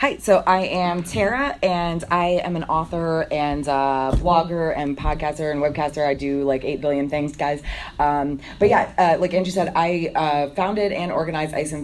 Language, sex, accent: English, female, American